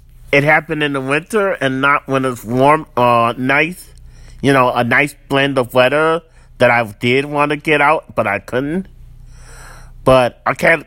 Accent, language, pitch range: American, English, 115-150 Hz